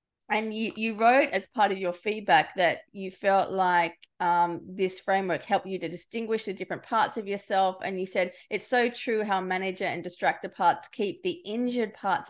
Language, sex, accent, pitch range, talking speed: English, female, Australian, 180-210 Hz, 195 wpm